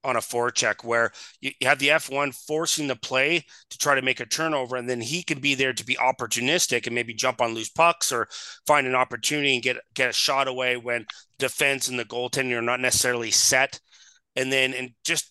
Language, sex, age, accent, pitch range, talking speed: English, male, 30-49, American, 120-150 Hz, 225 wpm